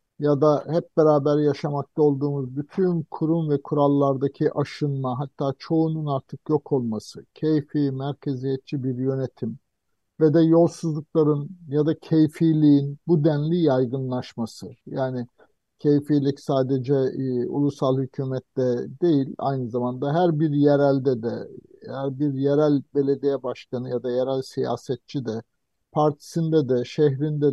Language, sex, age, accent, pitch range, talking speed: Turkish, male, 50-69, native, 130-155 Hz, 120 wpm